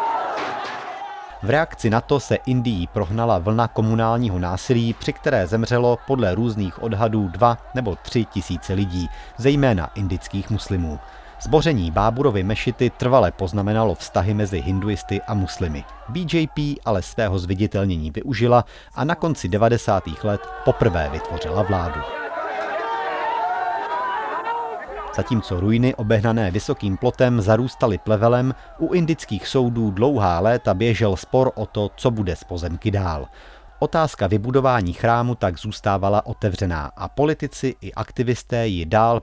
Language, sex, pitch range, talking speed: Czech, male, 95-125 Hz, 120 wpm